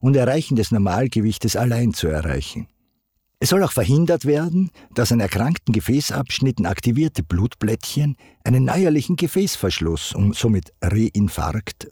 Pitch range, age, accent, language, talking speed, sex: 105-145 Hz, 50-69, Swiss, German, 120 wpm, male